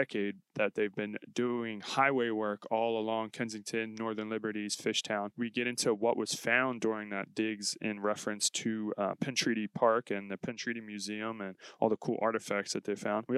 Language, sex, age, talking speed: English, male, 20-39, 195 wpm